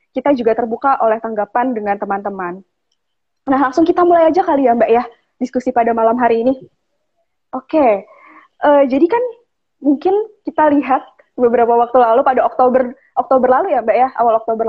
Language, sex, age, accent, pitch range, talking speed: Indonesian, female, 20-39, native, 220-265 Hz, 170 wpm